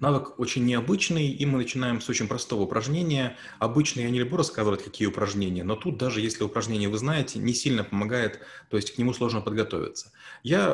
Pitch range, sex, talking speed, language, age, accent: 110-135 Hz, male, 190 wpm, Russian, 30-49, native